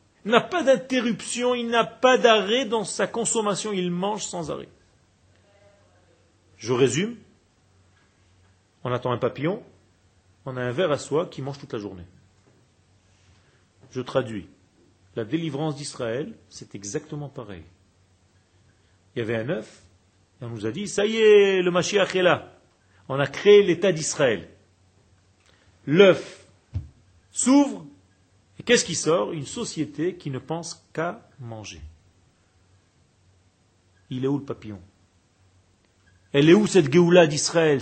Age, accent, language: 40-59, French, French